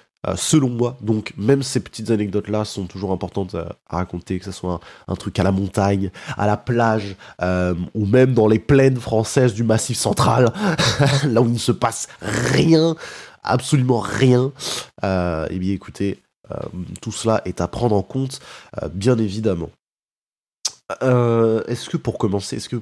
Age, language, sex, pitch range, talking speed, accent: 20-39, French, male, 95-125 Hz, 165 wpm, French